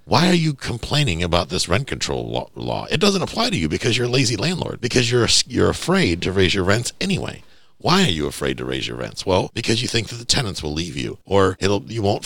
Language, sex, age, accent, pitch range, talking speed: English, male, 50-69, American, 75-115 Hz, 245 wpm